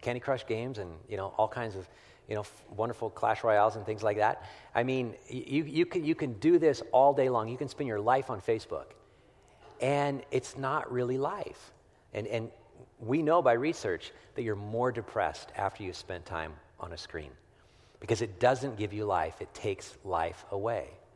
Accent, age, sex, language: American, 50-69, male, English